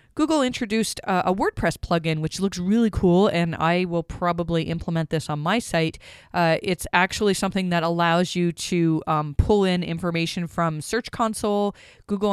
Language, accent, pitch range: English, American, 165-200 Hz